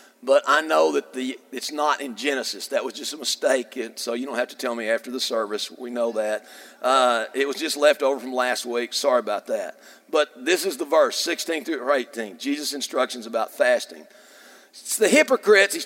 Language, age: English, 50-69